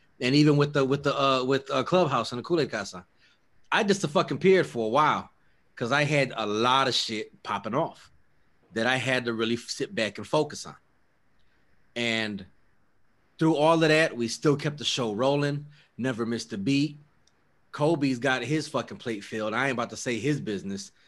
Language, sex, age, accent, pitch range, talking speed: English, male, 30-49, American, 105-135 Hz, 195 wpm